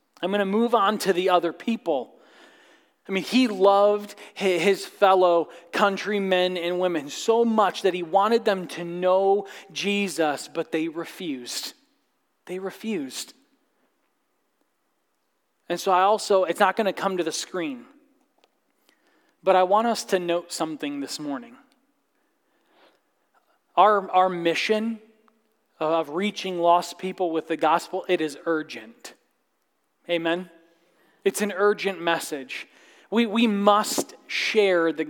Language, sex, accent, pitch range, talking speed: English, male, American, 170-210 Hz, 130 wpm